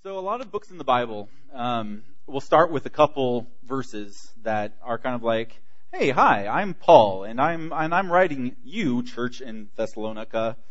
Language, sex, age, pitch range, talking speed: English, male, 20-39, 120-175 Hz, 185 wpm